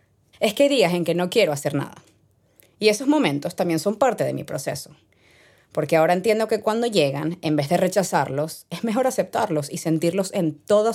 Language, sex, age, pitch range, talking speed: English, female, 20-39, 150-195 Hz, 195 wpm